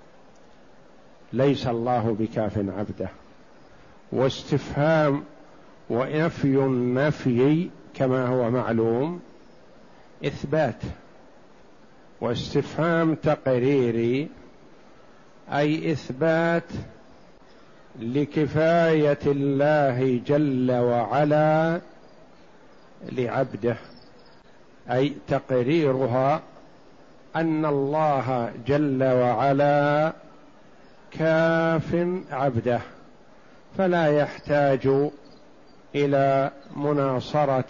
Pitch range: 130-155 Hz